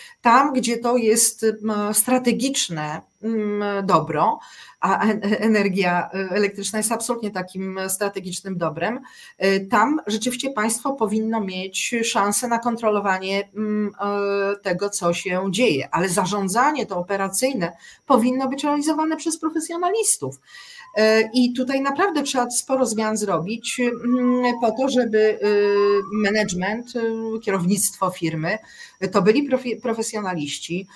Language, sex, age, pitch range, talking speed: Polish, female, 40-59, 195-265 Hz, 100 wpm